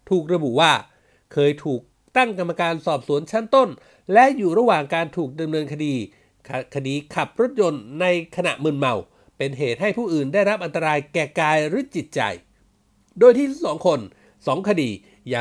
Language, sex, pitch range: Thai, male, 145-205 Hz